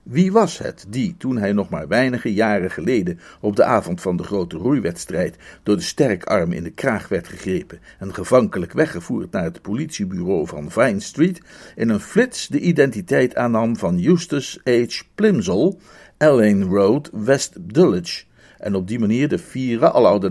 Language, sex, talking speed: Dutch, male, 170 wpm